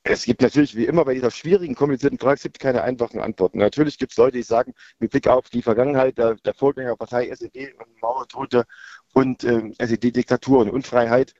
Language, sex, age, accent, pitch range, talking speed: German, male, 50-69, German, 110-130 Hz, 200 wpm